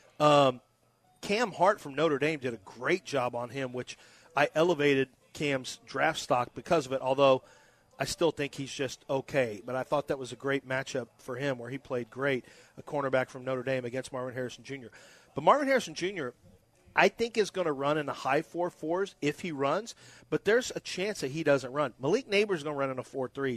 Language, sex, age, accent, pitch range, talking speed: English, male, 40-59, American, 130-155 Hz, 215 wpm